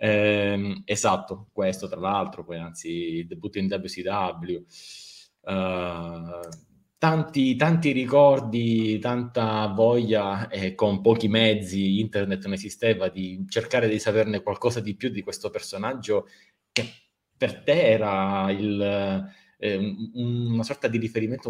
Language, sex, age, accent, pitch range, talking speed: Italian, male, 20-39, native, 95-110 Hz, 125 wpm